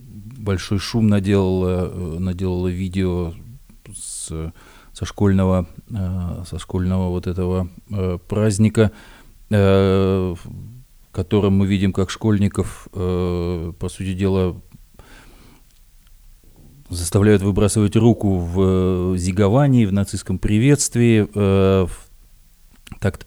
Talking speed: 80 wpm